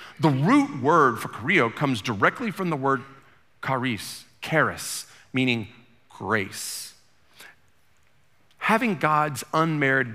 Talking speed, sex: 100 wpm, male